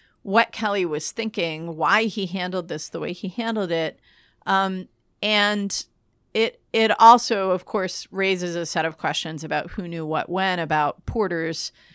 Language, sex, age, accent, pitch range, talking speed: English, female, 40-59, American, 175-230 Hz, 160 wpm